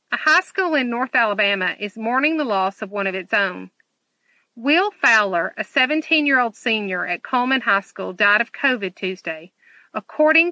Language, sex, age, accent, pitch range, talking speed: English, female, 50-69, American, 200-275 Hz, 165 wpm